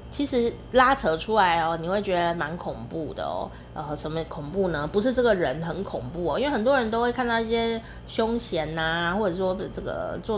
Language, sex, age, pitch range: Chinese, female, 30-49, 160-240 Hz